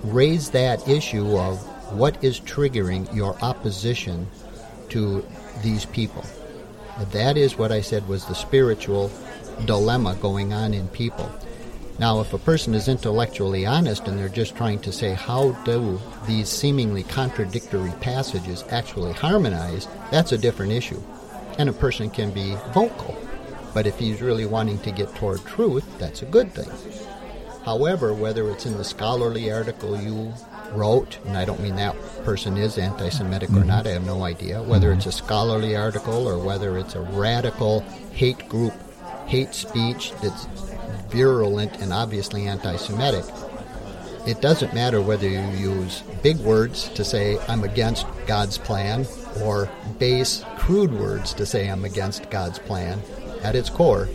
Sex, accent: male, American